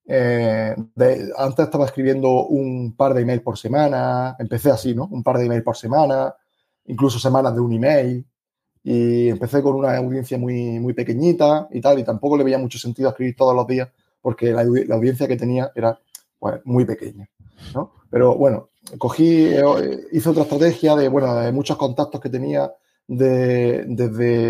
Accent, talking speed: Spanish, 175 wpm